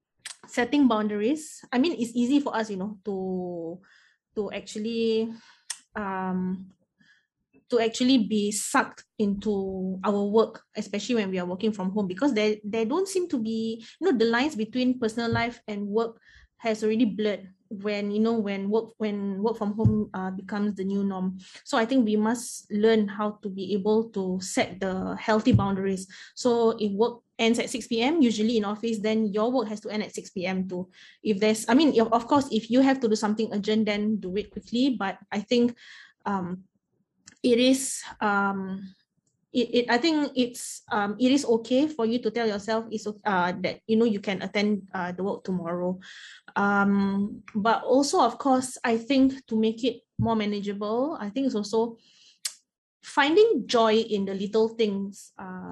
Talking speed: 180 wpm